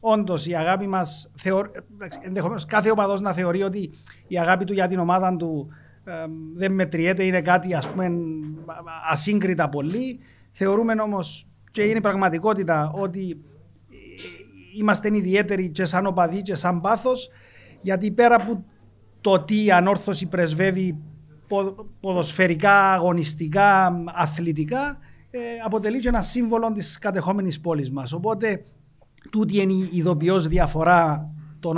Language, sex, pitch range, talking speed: Greek, male, 155-200 Hz, 125 wpm